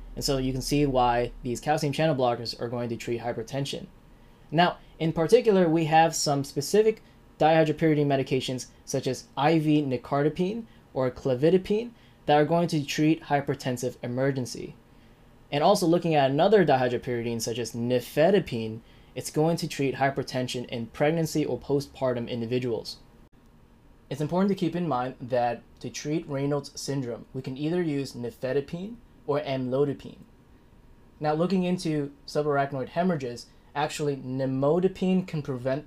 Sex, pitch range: male, 125-155 Hz